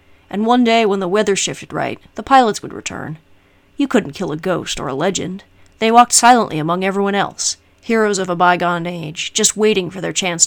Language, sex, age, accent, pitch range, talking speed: English, female, 30-49, American, 165-205 Hz, 205 wpm